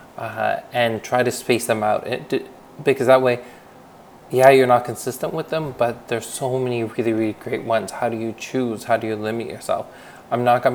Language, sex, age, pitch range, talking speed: English, male, 20-39, 110-125 Hz, 210 wpm